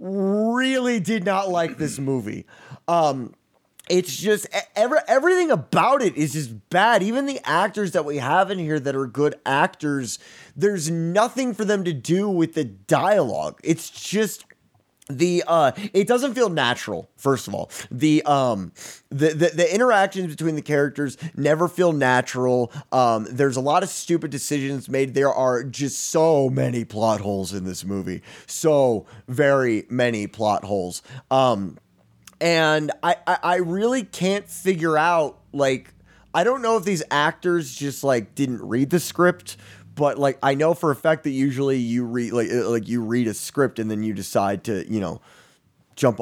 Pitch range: 125-180 Hz